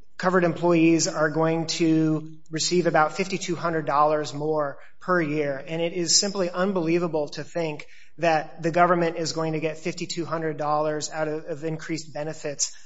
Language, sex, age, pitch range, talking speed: English, male, 30-49, 155-175 Hz, 145 wpm